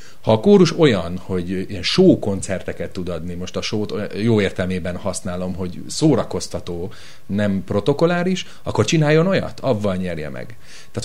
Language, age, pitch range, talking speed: Hungarian, 30-49, 90-120 Hz, 140 wpm